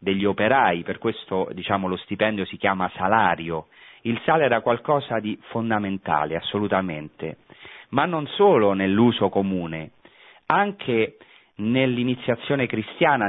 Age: 40-59